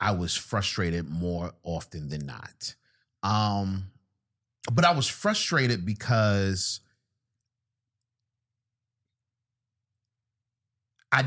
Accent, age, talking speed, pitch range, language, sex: American, 30-49, 75 wpm, 90-115 Hz, English, male